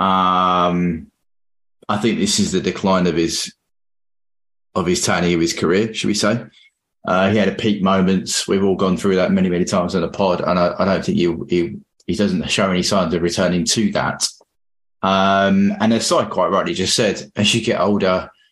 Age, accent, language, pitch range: 20-39, British, English, 95-110 Hz